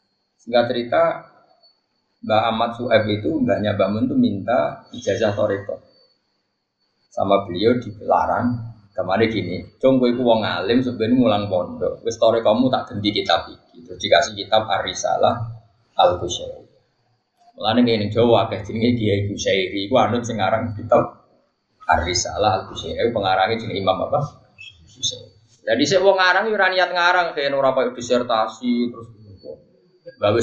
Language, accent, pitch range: Indonesian, native, 115-190 Hz